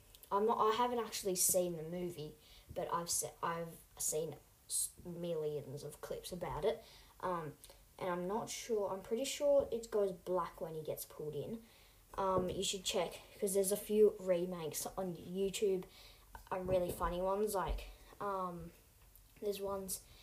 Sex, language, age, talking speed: female, English, 10-29, 160 wpm